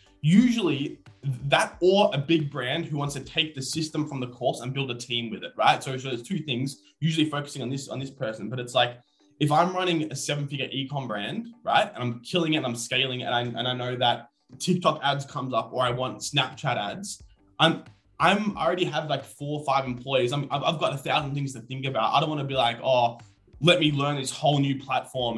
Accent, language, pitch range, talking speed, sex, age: Australian, English, 125-155 Hz, 235 wpm, male, 20-39